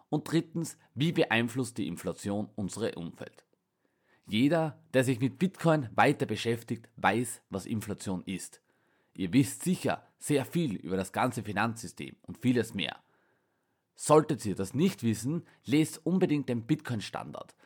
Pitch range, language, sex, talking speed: 100-150 Hz, German, male, 135 wpm